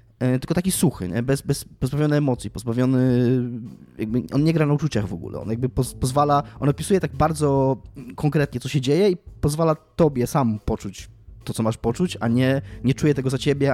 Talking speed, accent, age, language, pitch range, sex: 195 wpm, native, 20-39, Polish, 115-150 Hz, male